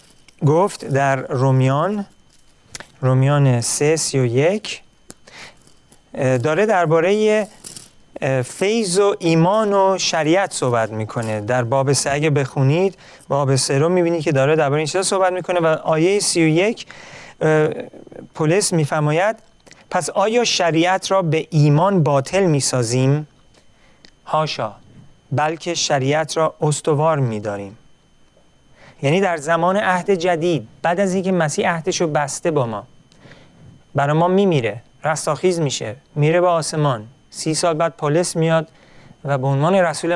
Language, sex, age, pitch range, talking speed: Persian, male, 40-59, 135-175 Hz, 130 wpm